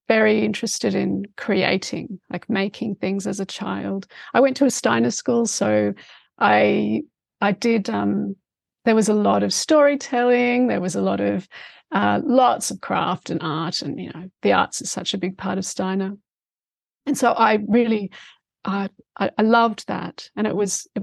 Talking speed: 180 wpm